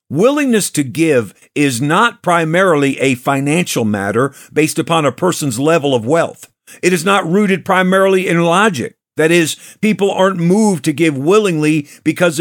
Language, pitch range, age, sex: English, 145-190 Hz, 50-69, male